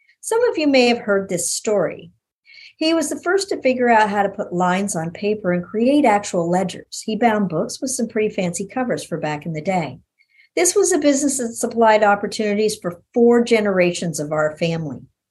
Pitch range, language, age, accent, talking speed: 180-250 Hz, English, 50-69, American, 200 wpm